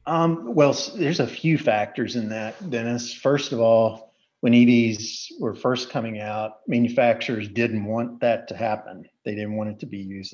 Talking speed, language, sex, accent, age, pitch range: 180 wpm, English, male, American, 50-69, 105-120 Hz